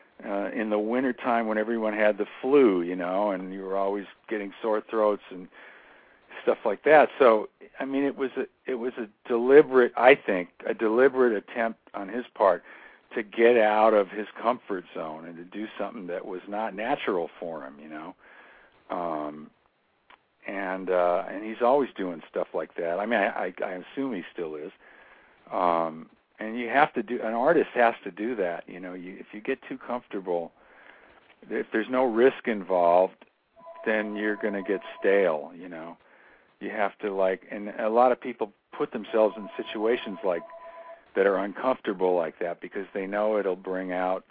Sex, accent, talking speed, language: male, American, 185 wpm, English